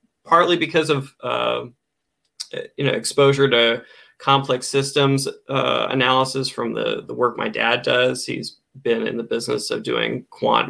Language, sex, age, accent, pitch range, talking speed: English, male, 20-39, American, 115-140 Hz, 150 wpm